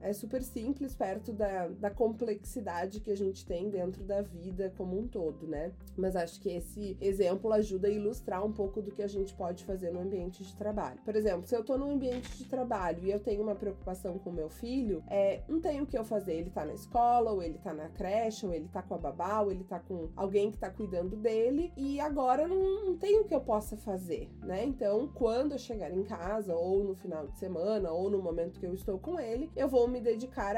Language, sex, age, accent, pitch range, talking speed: Portuguese, female, 20-39, Brazilian, 190-240 Hz, 235 wpm